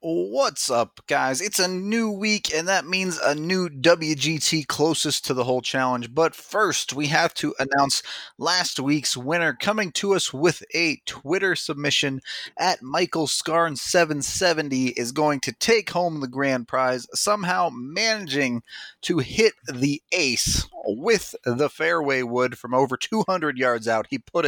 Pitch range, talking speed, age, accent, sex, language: 130-175 Hz, 150 wpm, 30-49, American, male, English